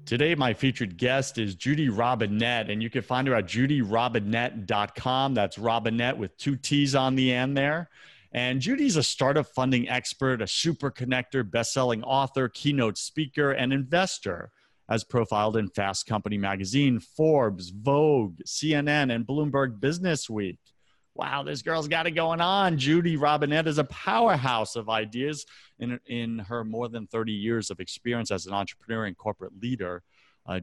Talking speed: 155 wpm